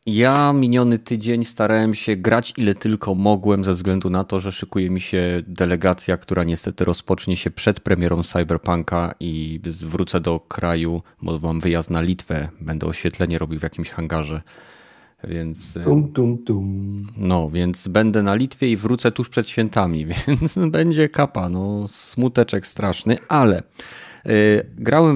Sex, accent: male, native